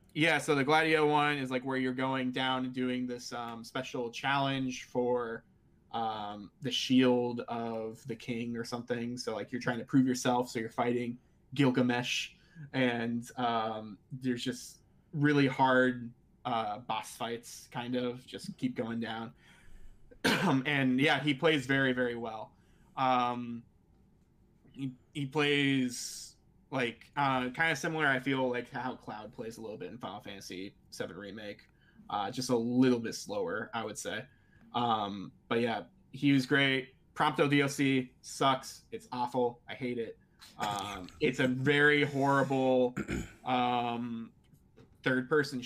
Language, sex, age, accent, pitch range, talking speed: English, male, 20-39, American, 120-140 Hz, 150 wpm